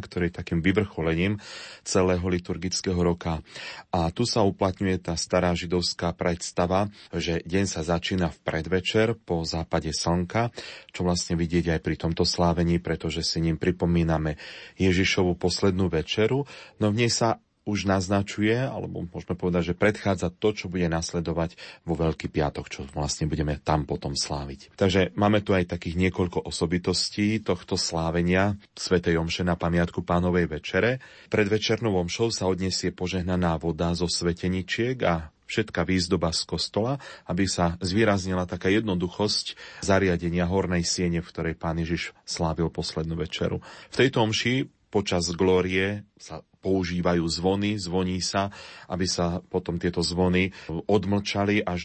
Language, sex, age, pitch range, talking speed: Slovak, male, 30-49, 85-95 Hz, 140 wpm